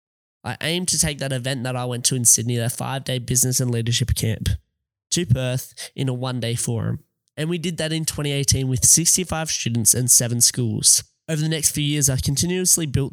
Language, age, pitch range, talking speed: English, 20-39, 125-150 Hz, 200 wpm